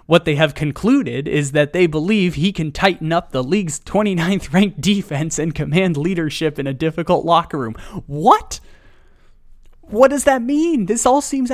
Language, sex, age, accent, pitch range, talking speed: English, male, 20-39, American, 135-190 Hz, 170 wpm